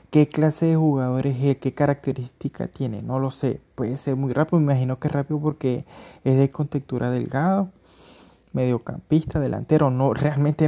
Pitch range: 125-150 Hz